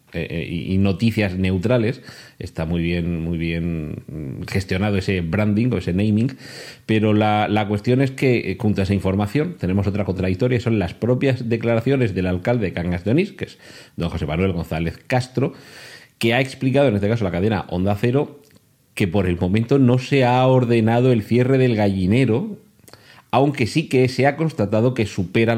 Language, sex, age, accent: Spanish, male, 40-59, Spanish